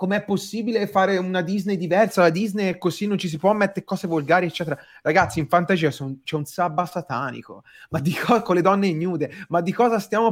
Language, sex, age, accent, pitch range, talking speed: Italian, male, 30-49, native, 145-185 Hz, 210 wpm